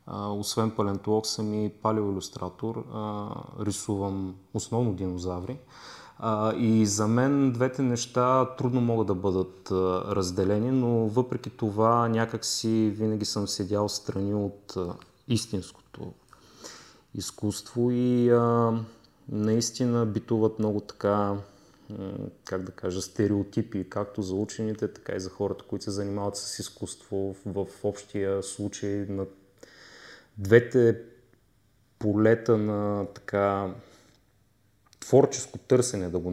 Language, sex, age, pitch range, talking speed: Bulgarian, male, 30-49, 95-110 Hz, 105 wpm